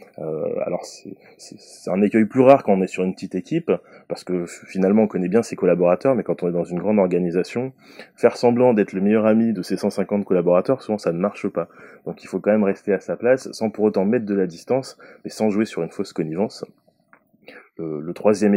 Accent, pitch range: French, 90-115 Hz